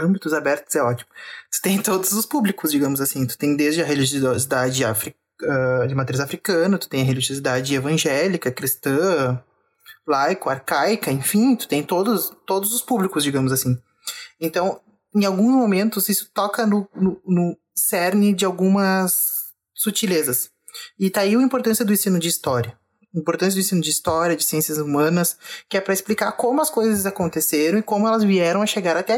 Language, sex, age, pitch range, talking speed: Portuguese, male, 20-39, 150-195 Hz, 170 wpm